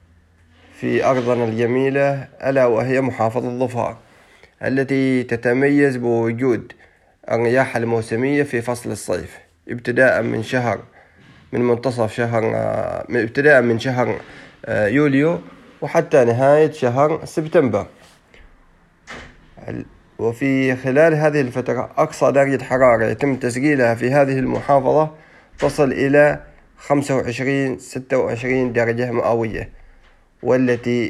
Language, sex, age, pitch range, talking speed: Arabic, male, 30-49, 115-135 Hz, 95 wpm